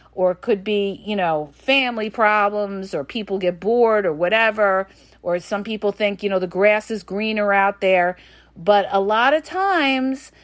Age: 50-69